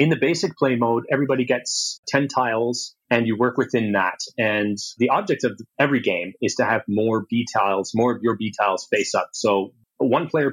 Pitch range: 105-125 Hz